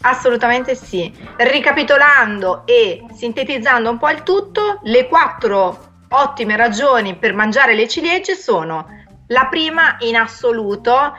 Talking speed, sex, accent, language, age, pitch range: 120 wpm, female, native, Italian, 30-49, 180-250 Hz